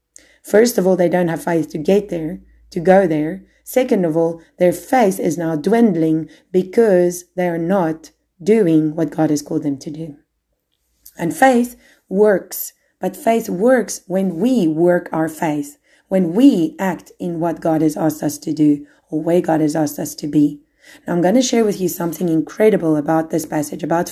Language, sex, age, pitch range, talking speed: English, female, 30-49, 160-215 Hz, 190 wpm